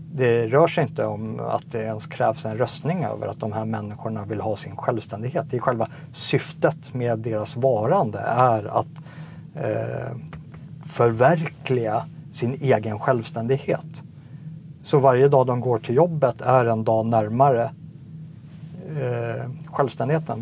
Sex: male